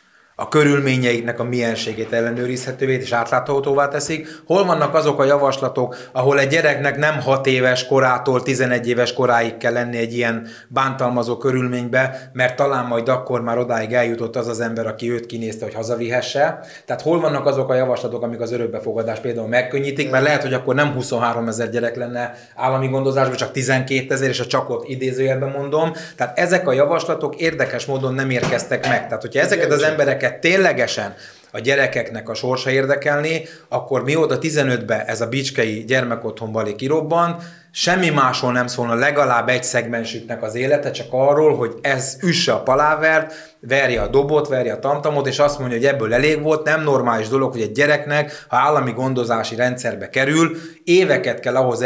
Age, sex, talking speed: 20-39, male, 170 wpm